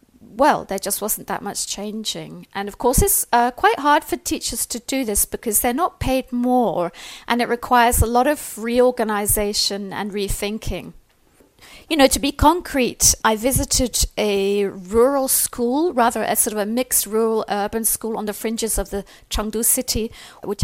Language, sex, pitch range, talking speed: English, female, 210-265 Hz, 175 wpm